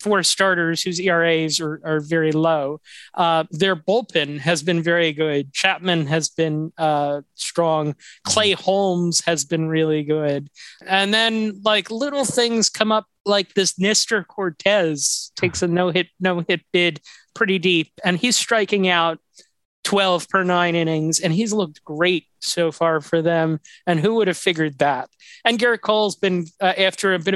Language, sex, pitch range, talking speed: English, male, 165-200 Hz, 160 wpm